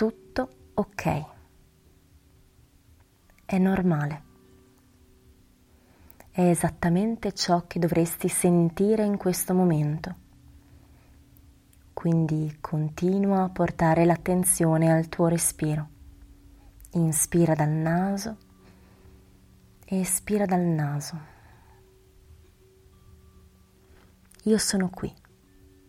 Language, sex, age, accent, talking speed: Italian, female, 20-39, native, 70 wpm